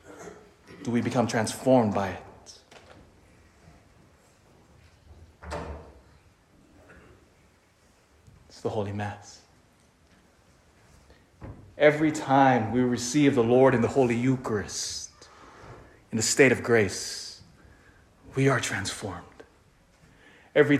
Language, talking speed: English, 85 wpm